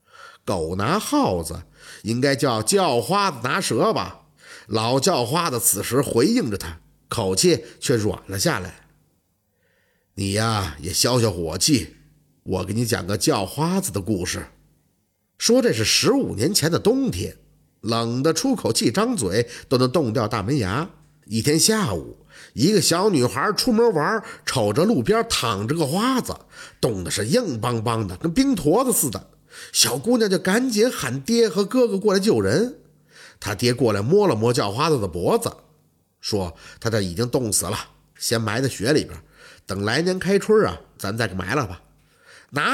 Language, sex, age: Chinese, male, 50-69